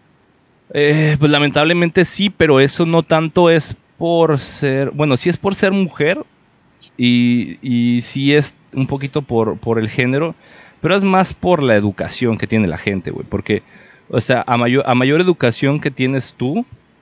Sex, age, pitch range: male, 30-49, 105-135 Hz